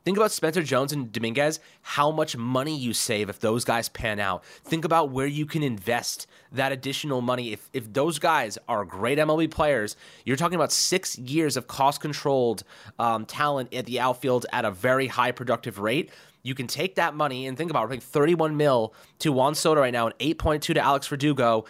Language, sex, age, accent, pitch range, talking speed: English, male, 20-39, American, 120-160 Hz, 200 wpm